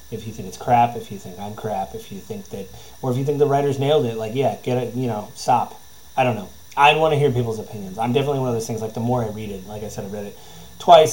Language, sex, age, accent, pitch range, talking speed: English, male, 30-49, American, 110-145 Hz, 305 wpm